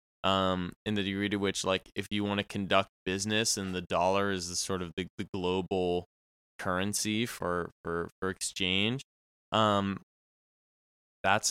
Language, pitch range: English, 85-100 Hz